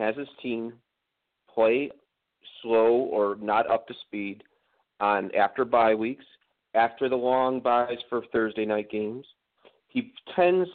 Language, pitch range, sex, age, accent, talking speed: English, 115-145 Hz, male, 40-59, American, 135 wpm